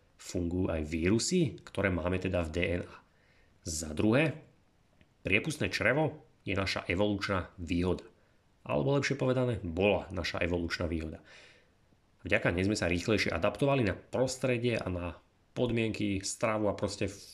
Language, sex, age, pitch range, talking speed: Slovak, male, 30-49, 90-110 Hz, 130 wpm